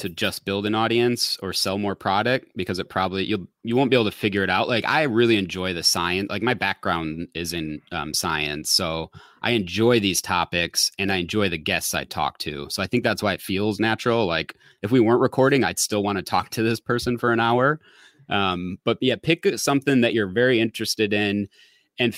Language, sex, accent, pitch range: English, male, American, 95-120 Hz